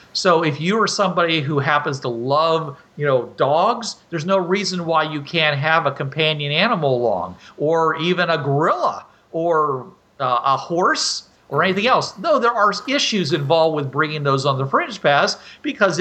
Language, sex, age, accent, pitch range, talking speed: English, male, 50-69, American, 140-170 Hz, 175 wpm